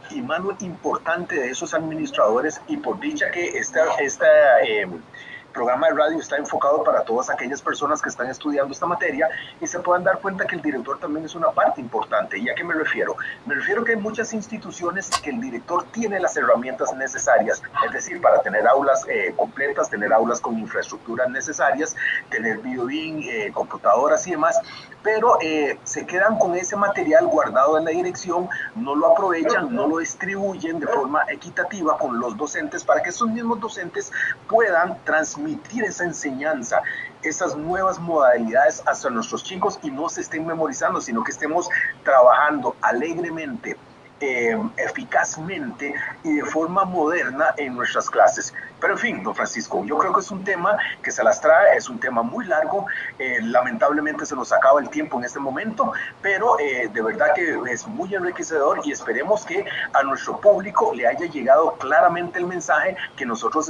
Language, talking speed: Spanish, 175 wpm